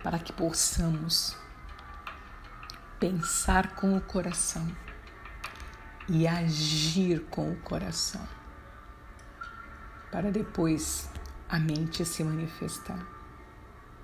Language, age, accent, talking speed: Portuguese, 50-69, Brazilian, 75 wpm